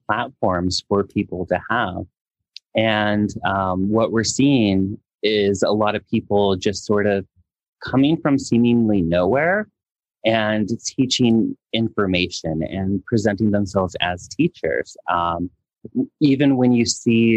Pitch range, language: 95-120 Hz, English